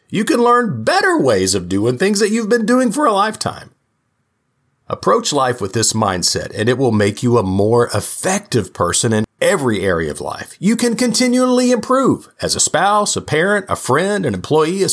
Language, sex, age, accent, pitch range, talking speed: English, male, 50-69, American, 115-195 Hz, 195 wpm